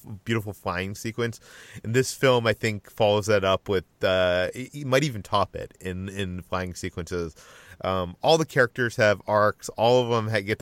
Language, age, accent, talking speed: English, 30-49, American, 185 wpm